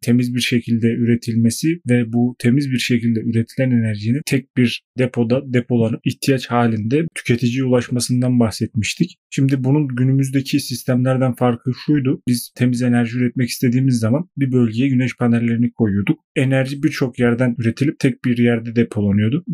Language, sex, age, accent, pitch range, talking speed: Turkish, male, 30-49, native, 120-145 Hz, 140 wpm